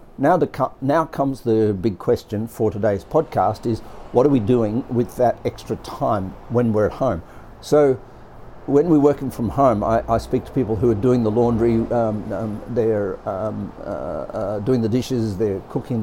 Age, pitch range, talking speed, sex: 60-79, 105-125 Hz, 185 wpm, male